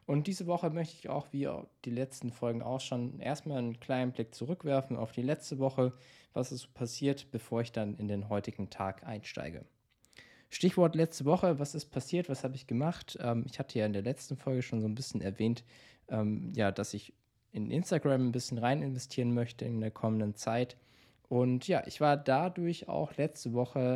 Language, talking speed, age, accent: German, 200 wpm, 20-39, German